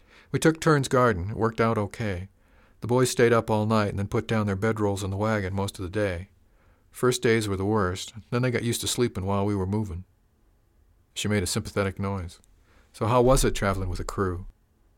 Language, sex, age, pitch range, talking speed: English, male, 50-69, 90-110 Hz, 220 wpm